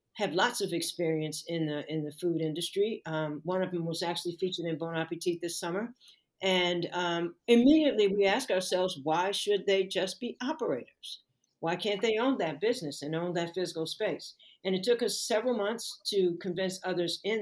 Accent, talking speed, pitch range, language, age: American, 190 wpm, 165-200 Hz, English, 50-69